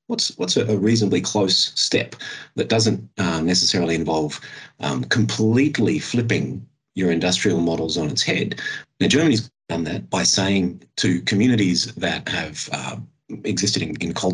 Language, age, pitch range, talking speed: English, 30-49, 85-105 Hz, 145 wpm